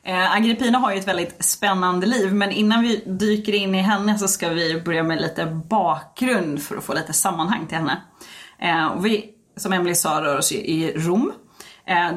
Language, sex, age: Swedish, female, 20-39